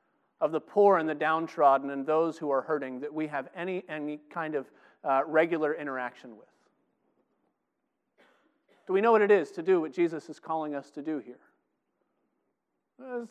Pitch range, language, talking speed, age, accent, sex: 140-185 Hz, English, 175 wpm, 40-59, American, male